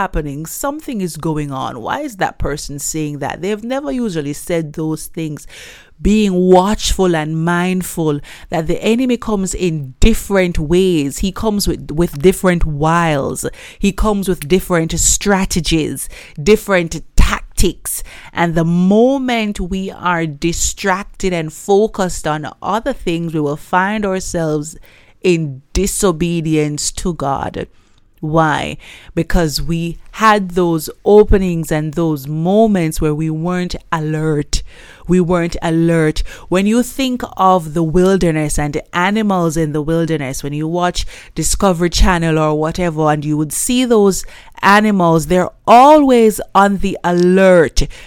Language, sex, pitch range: English, female, 160-200 Hz